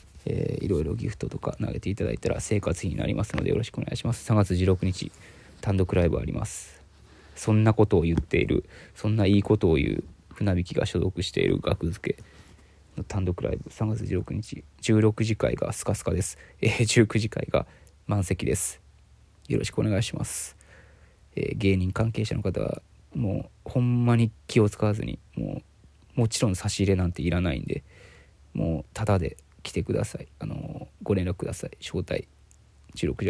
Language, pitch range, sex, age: Japanese, 85-110 Hz, male, 20-39